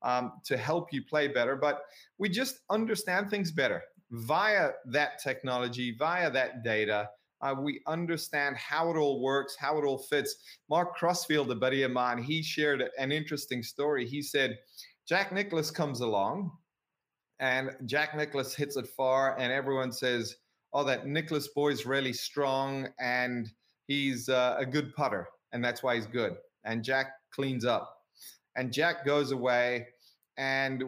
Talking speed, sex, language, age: 160 wpm, male, English, 30-49